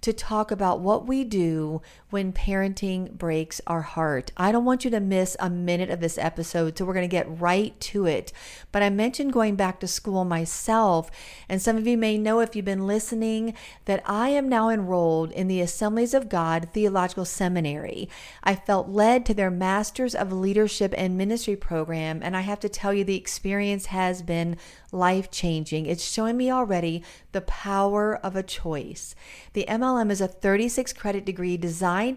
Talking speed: 180 wpm